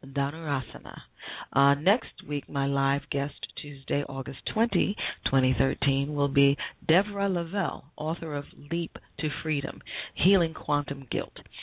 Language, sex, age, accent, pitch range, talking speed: English, female, 40-59, American, 140-180 Hz, 115 wpm